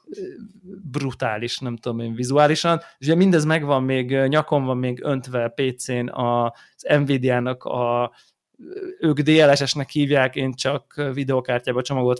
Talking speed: 130 wpm